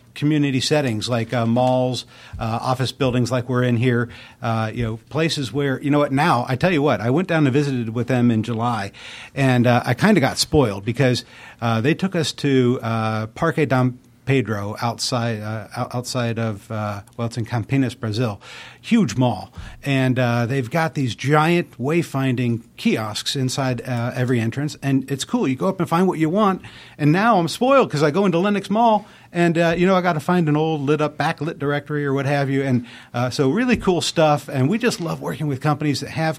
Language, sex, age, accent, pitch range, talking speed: English, male, 50-69, American, 120-150 Hz, 210 wpm